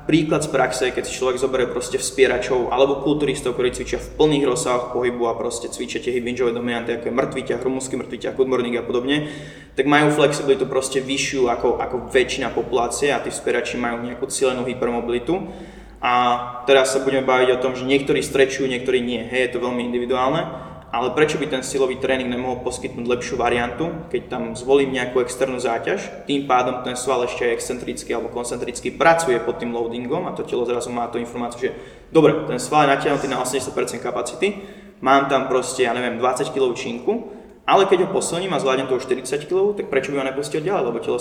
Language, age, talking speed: Slovak, 20-39, 195 wpm